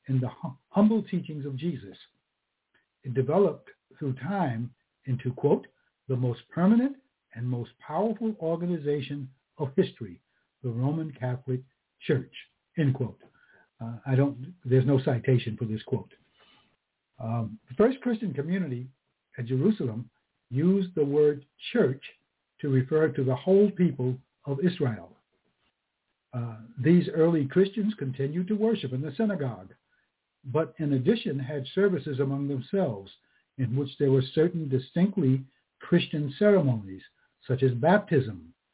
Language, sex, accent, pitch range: English, male, American, 130-180 Hz